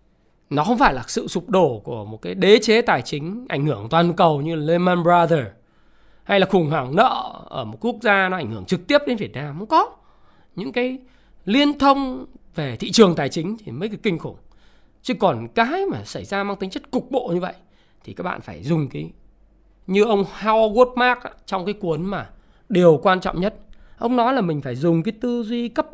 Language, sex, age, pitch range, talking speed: Vietnamese, male, 20-39, 175-245 Hz, 220 wpm